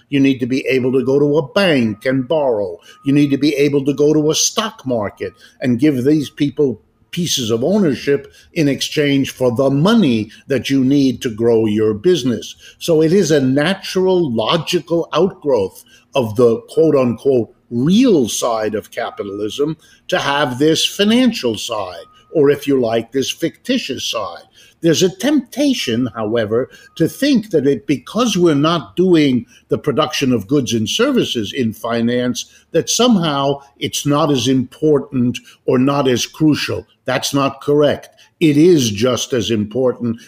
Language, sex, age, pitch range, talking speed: English, male, 50-69, 125-160 Hz, 160 wpm